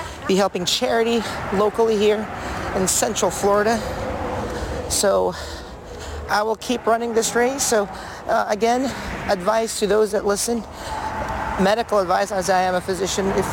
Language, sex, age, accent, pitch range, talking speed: English, male, 40-59, American, 190-225 Hz, 140 wpm